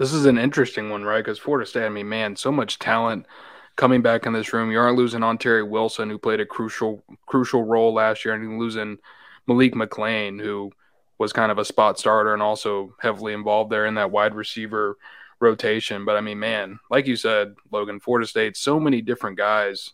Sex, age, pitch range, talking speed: male, 20-39, 105-120 Hz, 210 wpm